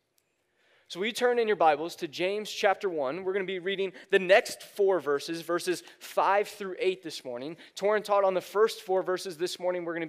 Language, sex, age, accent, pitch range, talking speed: English, male, 20-39, American, 160-200 Hz, 220 wpm